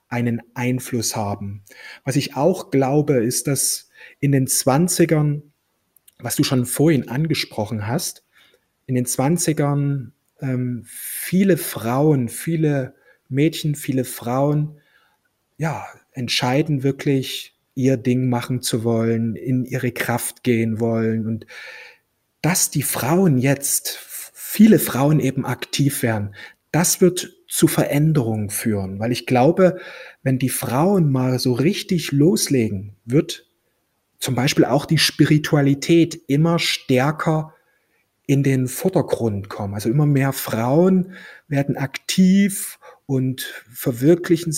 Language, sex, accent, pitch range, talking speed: German, male, German, 125-160 Hz, 115 wpm